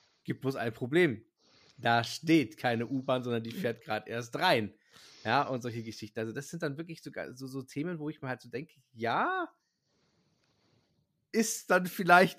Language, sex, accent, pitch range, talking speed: German, male, German, 130-170 Hz, 175 wpm